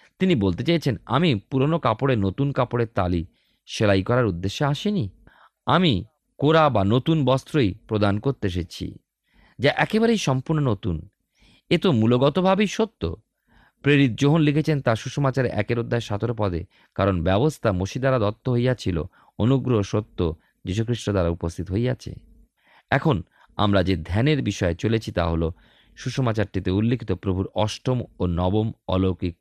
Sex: male